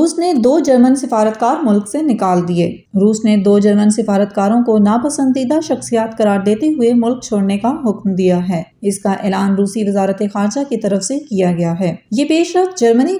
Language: English